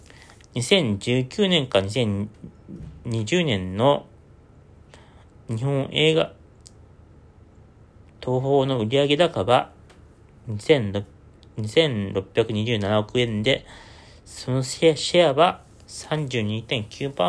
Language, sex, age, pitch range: Japanese, male, 40-59, 100-140 Hz